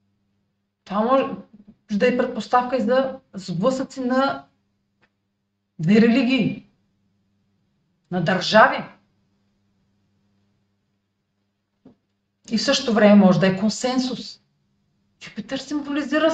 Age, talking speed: 40-59, 85 wpm